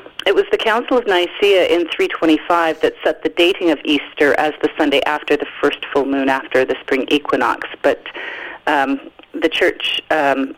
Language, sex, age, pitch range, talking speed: English, female, 40-59, 150-200 Hz, 175 wpm